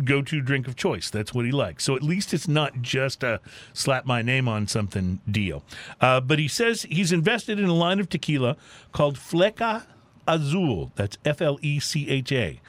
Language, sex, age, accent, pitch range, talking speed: English, male, 50-69, American, 120-155 Hz, 155 wpm